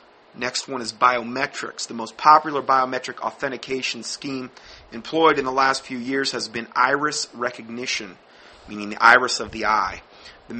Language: English